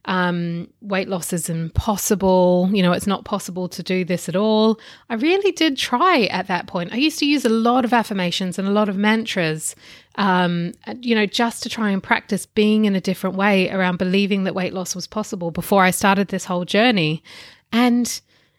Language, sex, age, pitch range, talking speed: English, female, 30-49, 185-225 Hz, 200 wpm